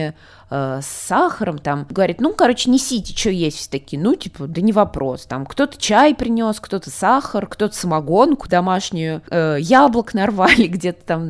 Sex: female